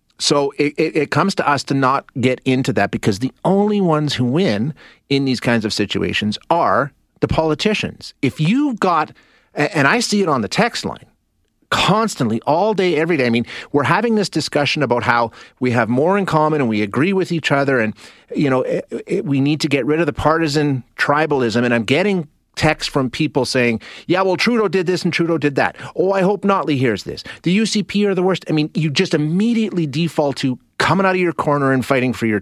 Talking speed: 215 wpm